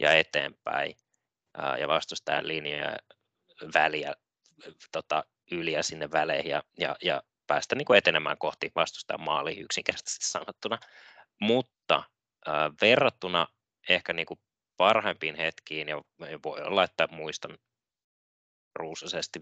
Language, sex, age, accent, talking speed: Finnish, male, 20-39, native, 95 wpm